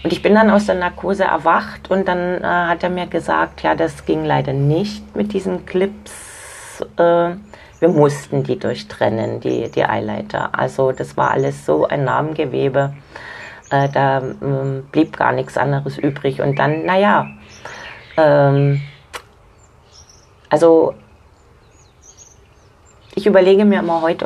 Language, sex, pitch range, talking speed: German, female, 135-180 Hz, 140 wpm